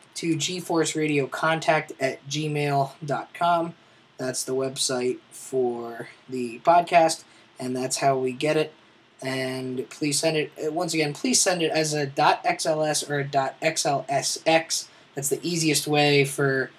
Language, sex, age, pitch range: English, male, 20-39, 135-155 Hz